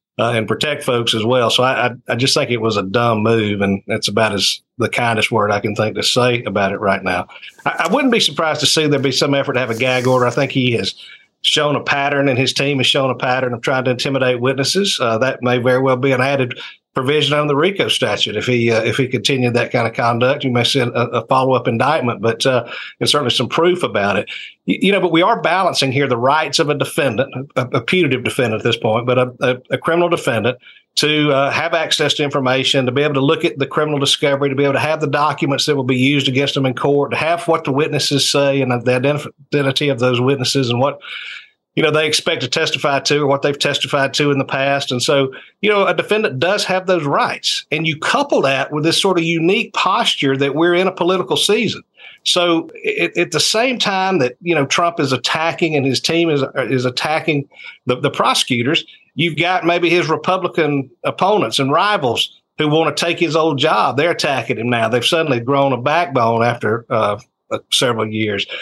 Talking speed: 230 wpm